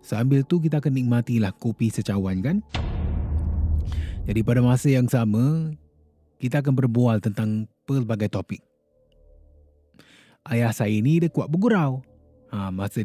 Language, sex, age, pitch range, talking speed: Malay, male, 30-49, 105-155 Hz, 125 wpm